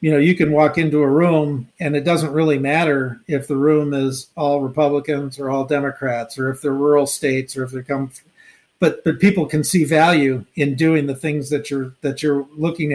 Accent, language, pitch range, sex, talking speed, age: American, English, 135-155 Hz, male, 215 wpm, 50-69